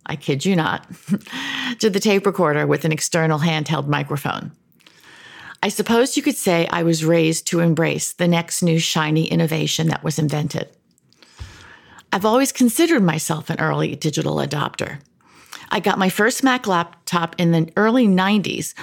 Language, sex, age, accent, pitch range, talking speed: English, female, 50-69, American, 160-200 Hz, 155 wpm